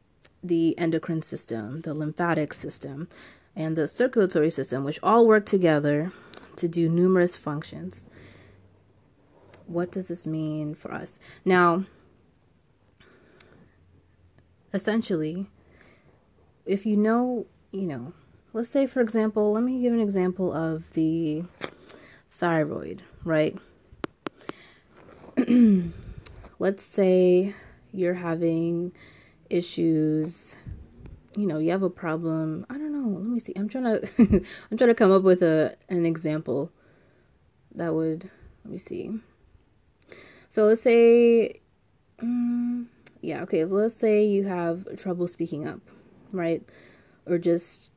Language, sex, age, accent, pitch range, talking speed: English, female, 20-39, American, 155-200 Hz, 120 wpm